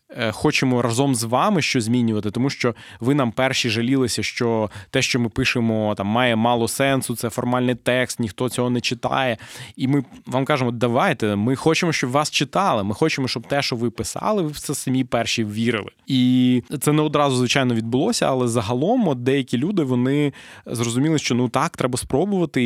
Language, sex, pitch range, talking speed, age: Ukrainian, male, 110-130 Hz, 175 wpm, 20-39